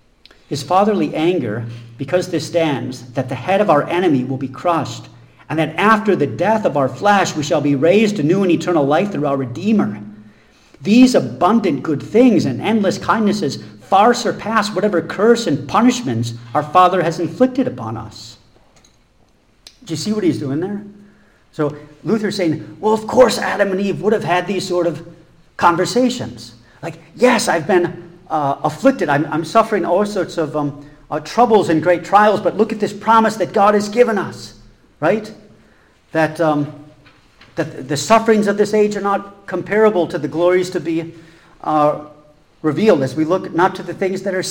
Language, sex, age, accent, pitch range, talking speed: English, male, 50-69, American, 150-200 Hz, 180 wpm